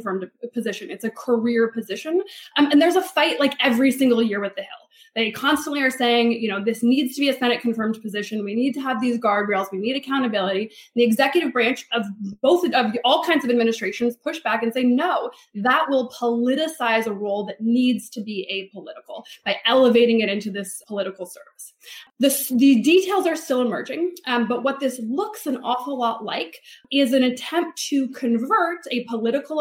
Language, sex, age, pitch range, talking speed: English, female, 20-39, 230-300 Hz, 195 wpm